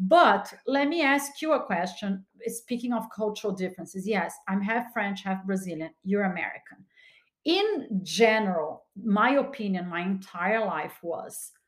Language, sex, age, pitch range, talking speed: English, female, 40-59, 185-230 Hz, 140 wpm